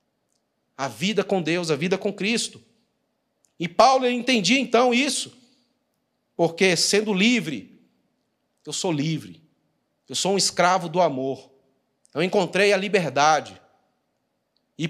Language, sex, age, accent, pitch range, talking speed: Portuguese, male, 40-59, Brazilian, 145-200 Hz, 125 wpm